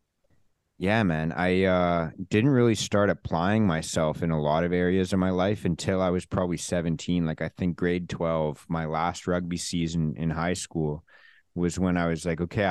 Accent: American